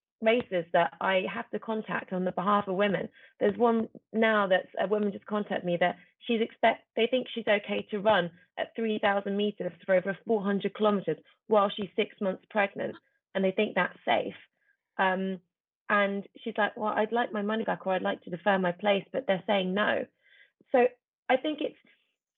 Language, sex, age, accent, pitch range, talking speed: English, female, 30-49, British, 190-230 Hz, 190 wpm